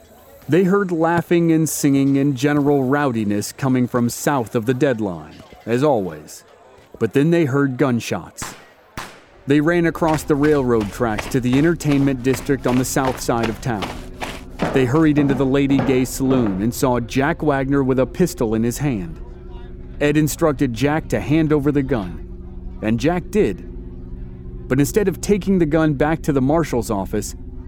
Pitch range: 115-150 Hz